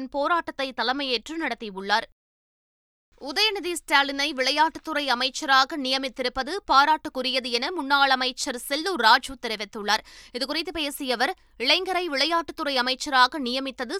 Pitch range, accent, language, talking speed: 195-300 Hz, native, Tamil, 95 wpm